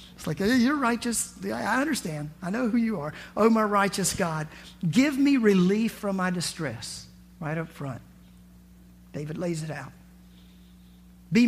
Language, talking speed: English, 160 wpm